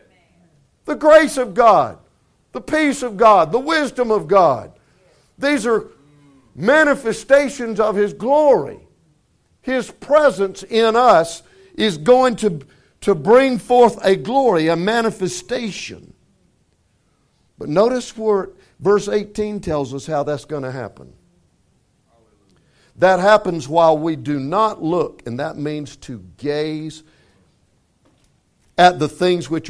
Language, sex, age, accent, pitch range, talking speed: English, male, 60-79, American, 140-225 Hz, 120 wpm